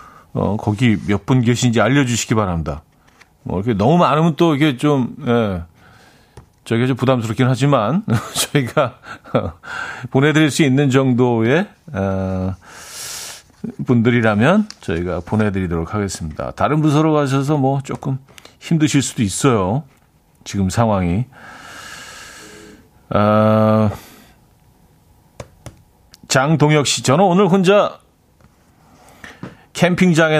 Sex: male